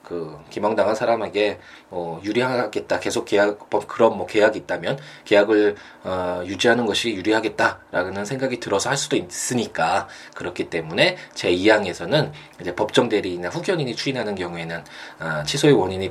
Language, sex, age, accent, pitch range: Korean, male, 20-39, native, 95-135 Hz